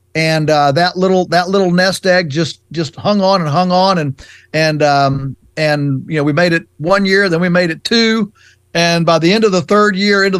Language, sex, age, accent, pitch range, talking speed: English, male, 40-59, American, 150-185 Hz, 230 wpm